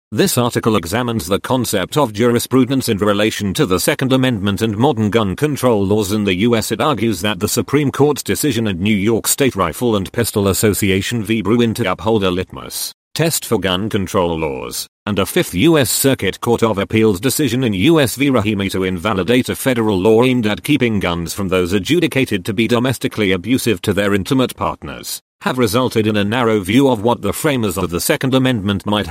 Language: English